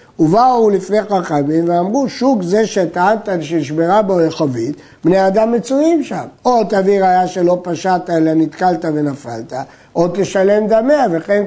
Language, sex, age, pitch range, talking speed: Hebrew, male, 60-79, 170-220 Hz, 135 wpm